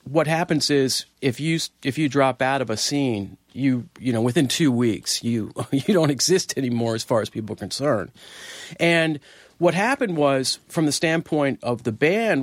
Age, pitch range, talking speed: 40-59, 115-150 Hz, 190 wpm